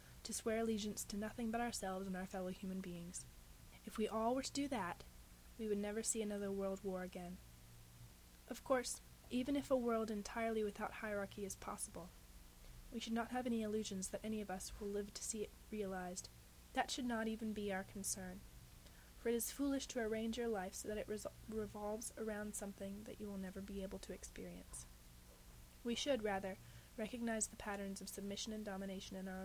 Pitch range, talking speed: 190-220 Hz, 195 wpm